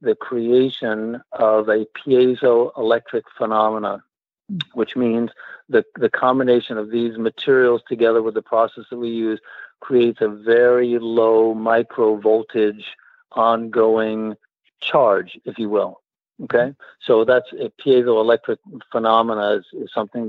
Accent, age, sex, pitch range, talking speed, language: American, 60-79, male, 110-125 Hz, 120 wpm, English